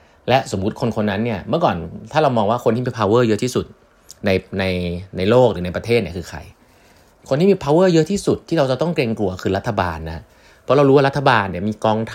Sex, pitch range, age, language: male, 95-130 Hz, 30-49, Thai